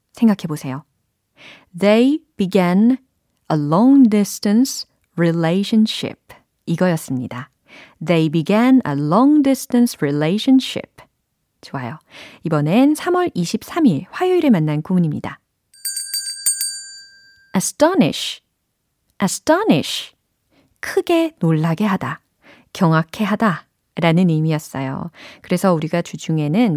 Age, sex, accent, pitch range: 40-59, female, native, 165-250 Hz